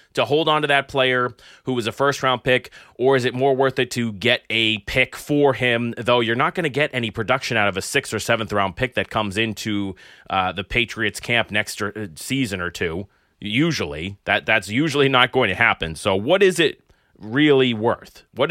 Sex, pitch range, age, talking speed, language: male, 100-130 Hz, 30-49, 210 wpm, English